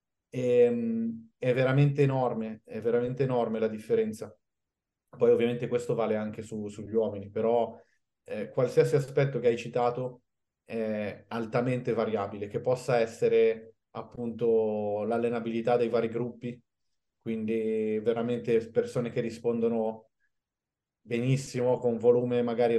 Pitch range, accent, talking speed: 110-125 Hz, native, 110 wpm